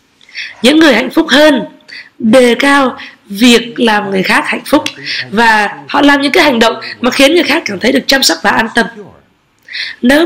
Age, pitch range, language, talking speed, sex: 20-39, 215-290 Hz, Vietnamese, 195 wpm, female